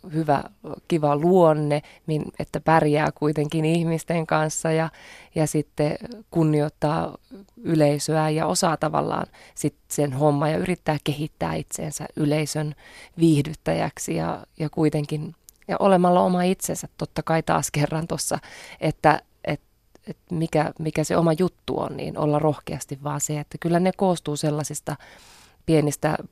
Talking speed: 130 wpm